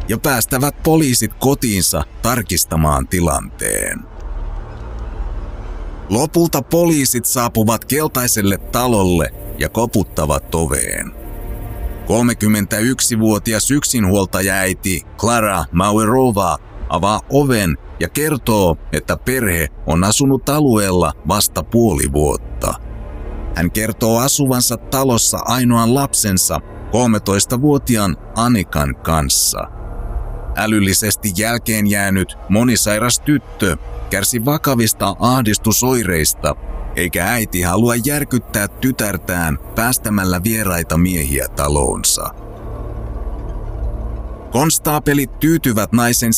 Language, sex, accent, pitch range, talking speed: Finnish, male, native, 90-120 Hz, 80 wpm